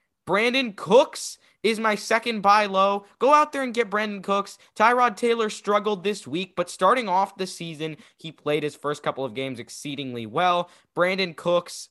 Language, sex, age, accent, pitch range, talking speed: English, male, 20-39, American, 140-190 Hz, 175 wpm